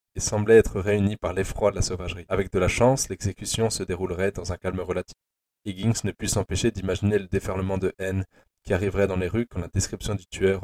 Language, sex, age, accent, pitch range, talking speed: French, male, 20-39, French, 90-105 Hz, 220 wpm